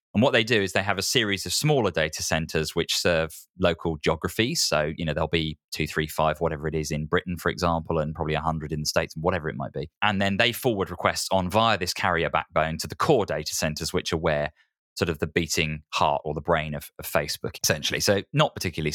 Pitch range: 80-95 Hz